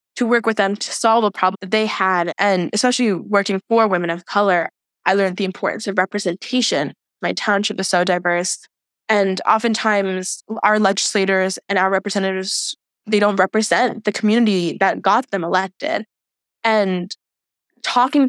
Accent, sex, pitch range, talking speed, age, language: American, female, 180-210 Hz, 155 wpm, 10-29, English